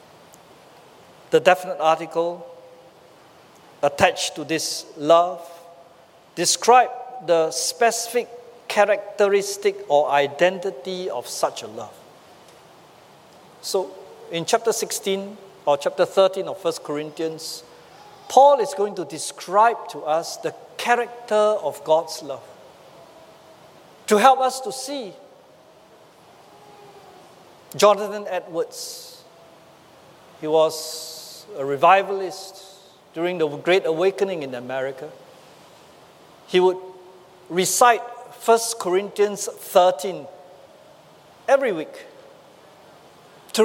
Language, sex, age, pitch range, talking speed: English, male, 50-69, 170-220 Hz, 90 wpm